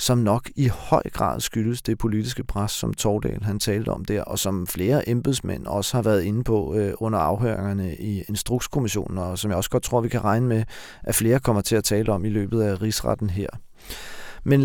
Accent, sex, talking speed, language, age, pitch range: native, male, 215 wpm, Danish, 40-59, 105-125 Hz